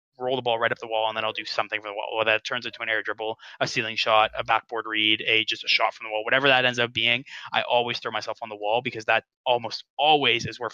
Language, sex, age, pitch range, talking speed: English, male, 20-39, 110-125 Hz, 290 wpm